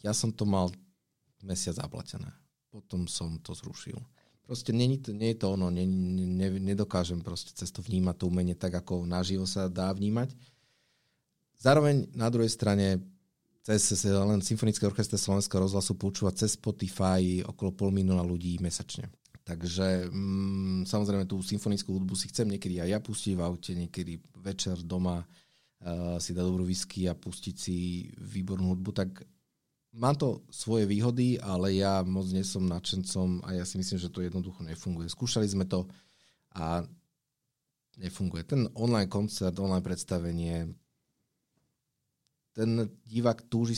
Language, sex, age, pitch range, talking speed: Slovak, male, 30-49, 90-110 Hz, 150 wpm